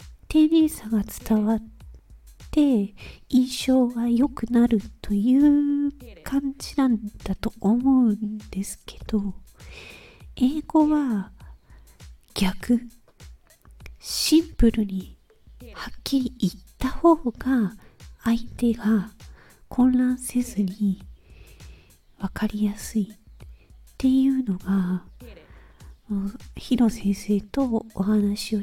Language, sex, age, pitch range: Japanese, female, 40-59, 210-260 Hz